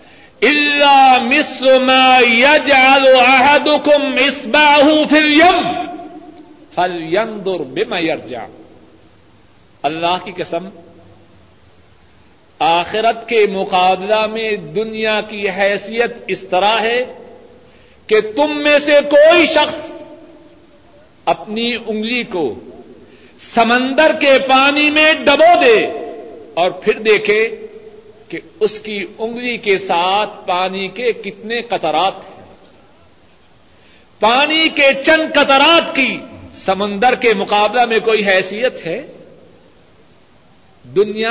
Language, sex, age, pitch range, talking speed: Urdu, male, 60-79, 185-295 Hz, 90 wpm